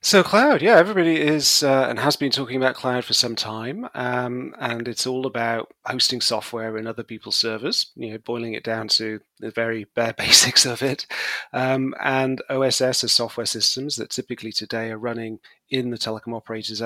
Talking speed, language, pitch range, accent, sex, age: 190 wpm, English, 115-130 Hz, British, male, 30-49